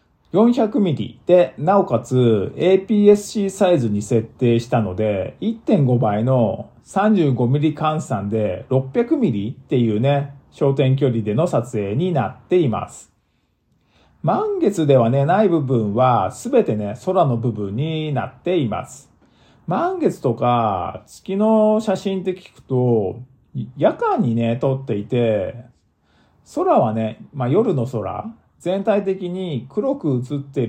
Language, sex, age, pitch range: Japanese, male, 50-69, 115-175 Hz